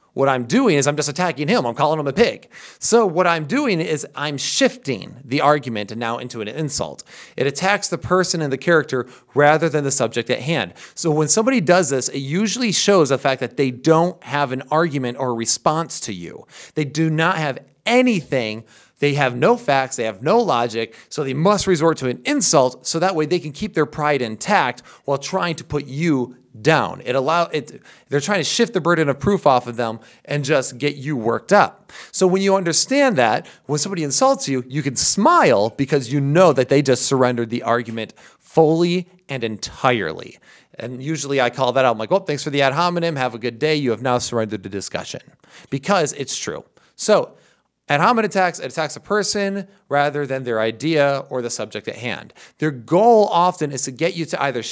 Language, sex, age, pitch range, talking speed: English, male, 30-49, 130-180 Hz, 210 wpm